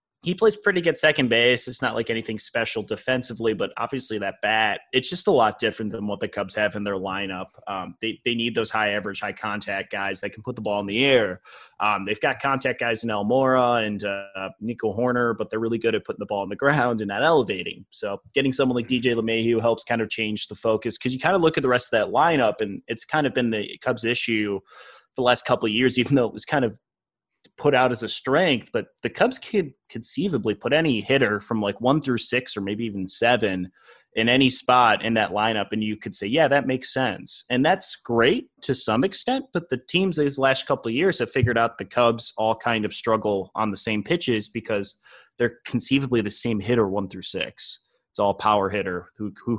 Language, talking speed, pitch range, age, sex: English, 235 wpm, 105-125 Hz, 20-39, male